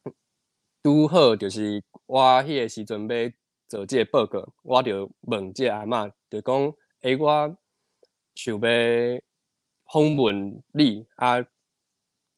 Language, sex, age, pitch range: Chinese, male, 20-39, 110-145 Hz